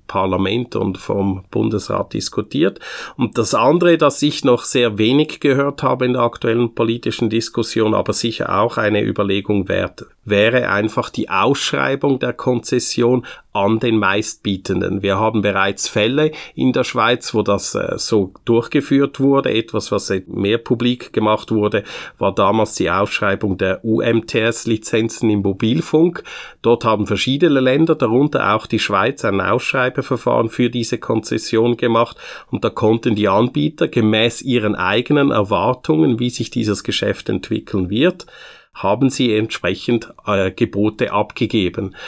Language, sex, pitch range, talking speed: German, male, 105-125 Hz, 140 wpm